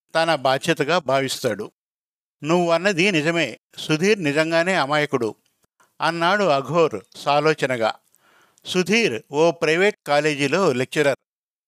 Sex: male